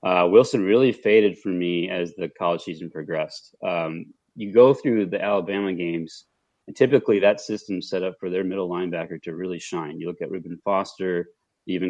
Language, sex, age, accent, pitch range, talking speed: English, male, 30-49, American, 85-100 Hz, 185 wpm